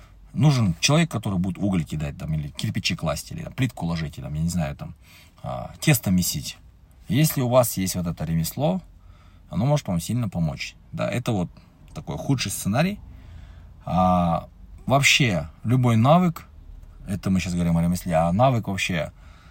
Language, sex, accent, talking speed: Russian, male, native, 135 wpm